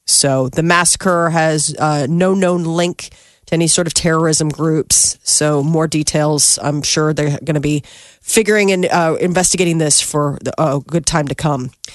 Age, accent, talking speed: 40-59, American, 165 wpm